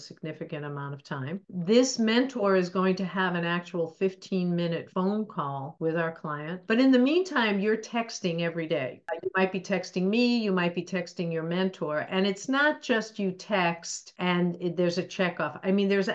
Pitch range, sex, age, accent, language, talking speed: 165-200 Hz, female, 50-69, American, English, 190 wpm